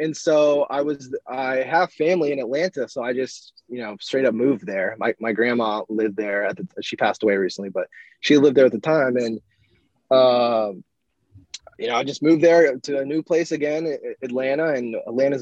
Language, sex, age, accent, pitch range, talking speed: English, male, 20-39, American, 115-155 Hz, 200 wpm